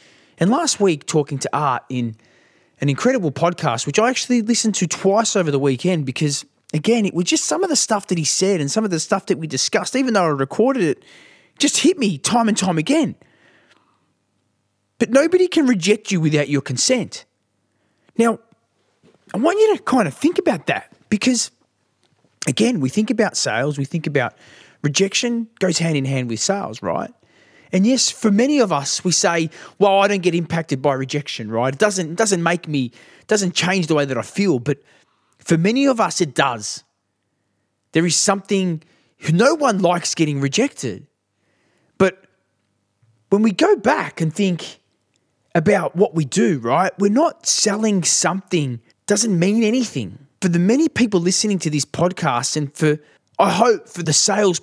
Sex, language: male, English